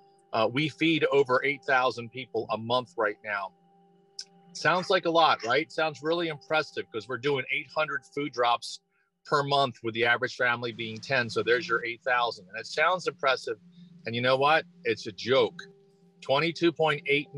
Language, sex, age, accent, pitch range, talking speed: English, male, 40-59, American, 130-195 Hz, 165 wpm